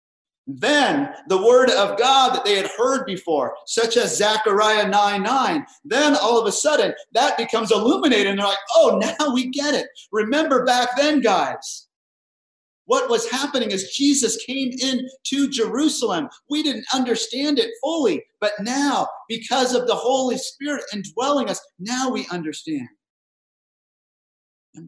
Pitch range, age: 200-265 Hz, 50-69